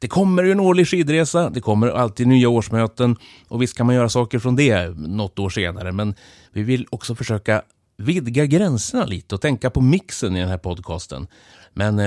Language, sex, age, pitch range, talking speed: Swedish, male, 30-49, 100-130 Hz, 195 wpm